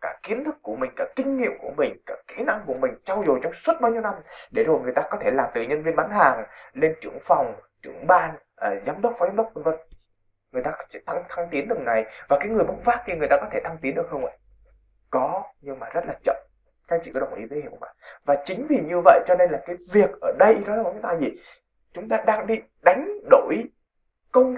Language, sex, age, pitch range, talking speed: Vietnamese, male, 20-39, 155-255 Hz, 265 wpm